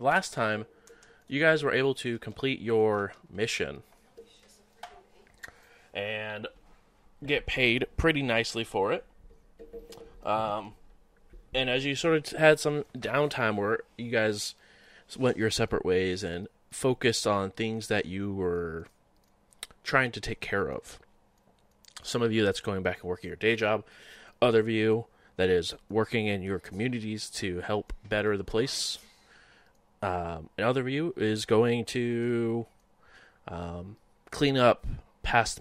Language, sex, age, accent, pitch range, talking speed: English, male, 20-39, American, 95-120 Hz, 140 wpm